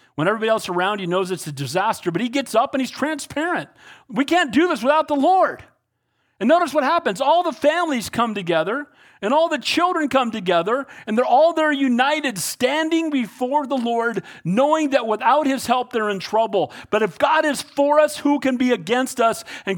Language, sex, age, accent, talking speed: English, male, 40-59, American, 205 wpm